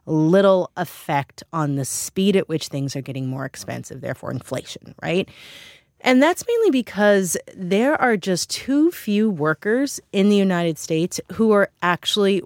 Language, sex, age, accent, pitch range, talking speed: English, female, 30-49, American, 155-210 Hz, 155 wpm